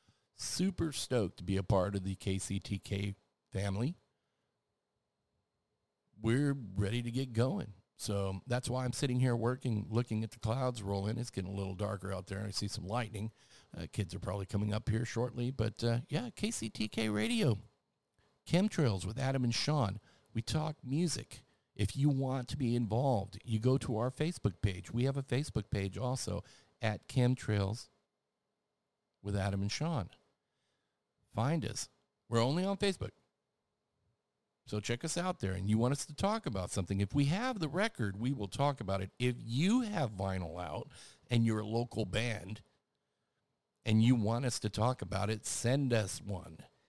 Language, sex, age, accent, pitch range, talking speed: English, male, 50-69, American, 100-125 Hz, 170 wpm